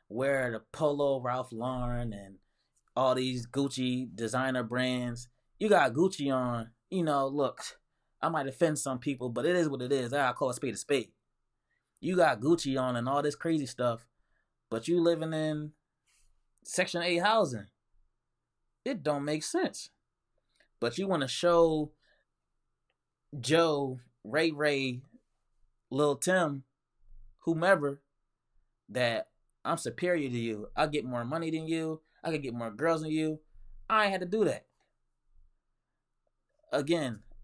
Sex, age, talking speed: male, 20-39, 145 wpm